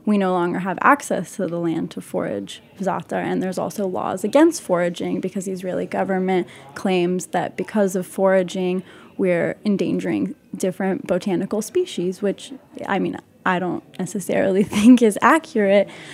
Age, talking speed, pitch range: 10-29, 150 wpm, 180-210 Hz